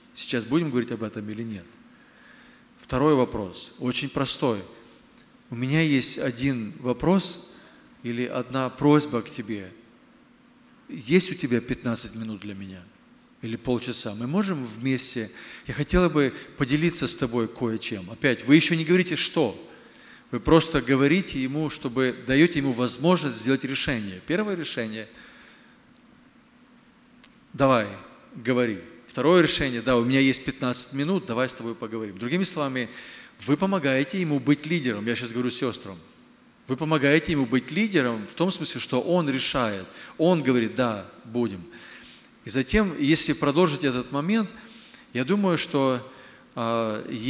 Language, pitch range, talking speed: Ukrainian, 120-165 Hz, 140 wpm